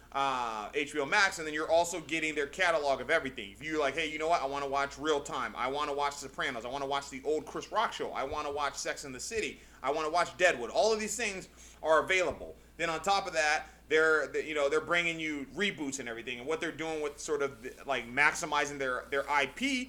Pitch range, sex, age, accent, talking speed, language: 135-170 Hz, male, 30-49, American, 250 wpm, English